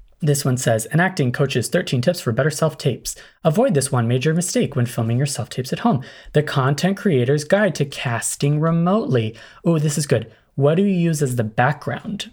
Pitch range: 125-160 Hz